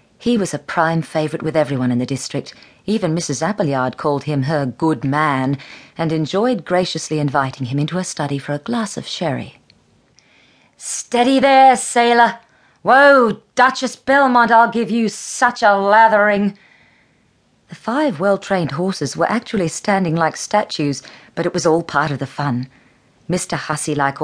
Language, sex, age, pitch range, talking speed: English, female, 40-59, 145-190 Hz, 155 wpm